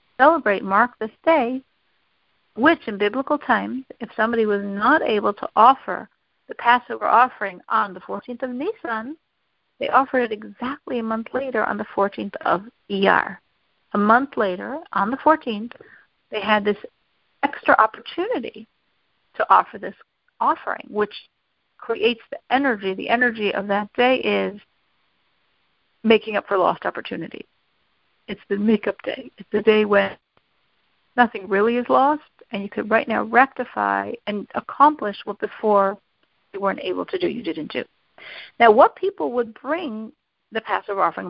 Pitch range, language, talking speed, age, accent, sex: 205-270 Hz, English, 150 wpm, 50-69, American, female